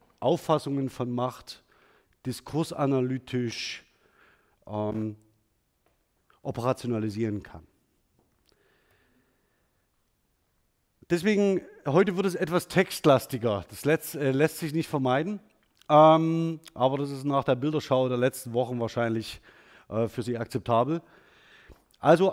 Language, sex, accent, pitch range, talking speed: German, male, German, 125-165 Hz, 95 wpm